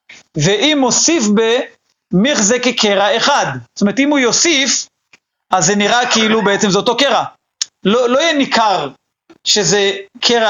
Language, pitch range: Hebrew, 190-245 Hz